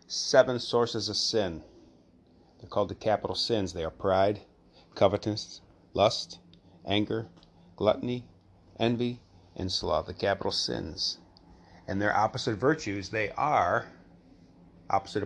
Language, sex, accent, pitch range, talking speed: English, male, American, 85-110 Hz, 115 wpm